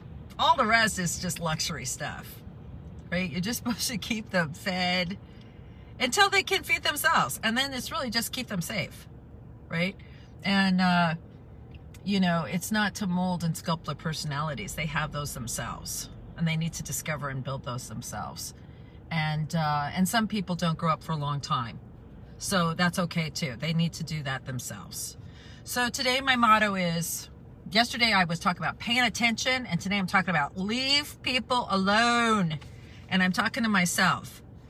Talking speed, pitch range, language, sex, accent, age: 175 wpm, 150-205 Hz, English, female, American, 40-59